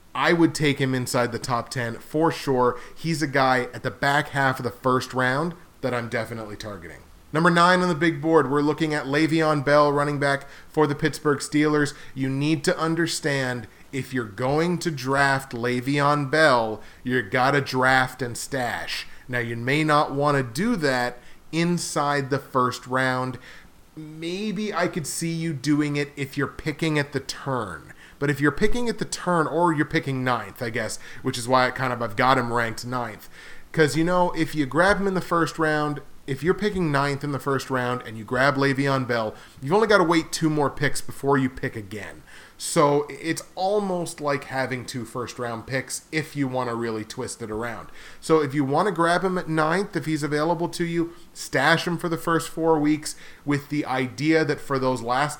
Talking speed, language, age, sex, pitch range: 205 wpm, English, 30-49, male, 125-155 Hz